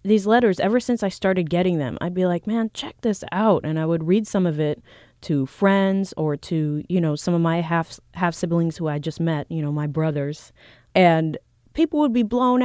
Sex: female